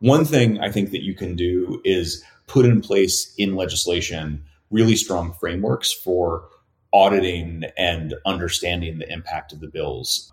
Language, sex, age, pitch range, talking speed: English, male, 30-49, 85-105 Hz, 150 wpm